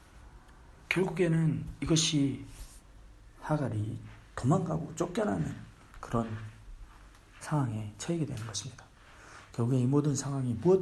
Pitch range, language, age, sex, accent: 105-150 Hz, Korean, 50-69, male, native